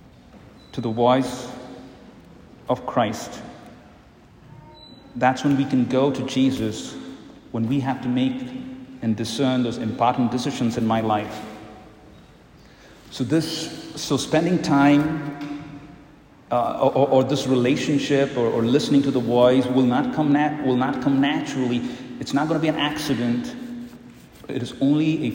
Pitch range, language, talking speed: 120-145 Hz, English, 135 wpm